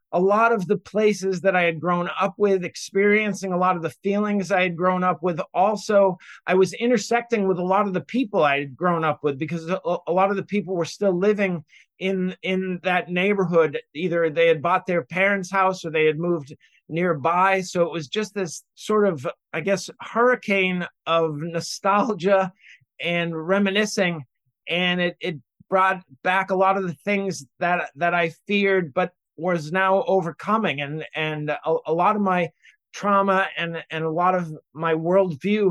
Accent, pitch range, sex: American, 160-195 Hz, male